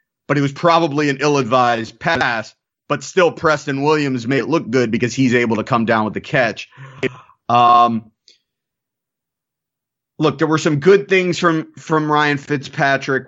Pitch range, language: 115-145 Hz, English